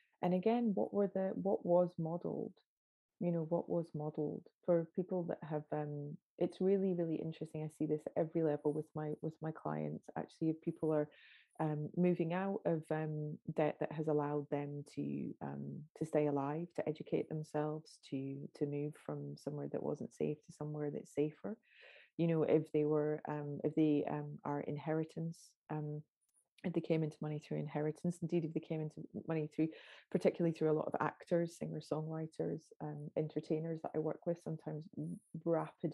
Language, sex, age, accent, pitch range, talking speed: English, female, 30-49, British, 150-165 Hz, 185 wpm